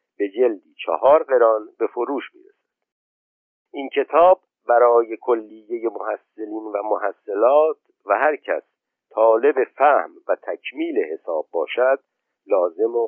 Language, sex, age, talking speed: Persian, male, 50-69, 115 wpm